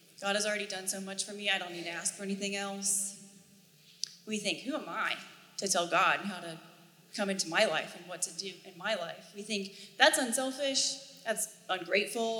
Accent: American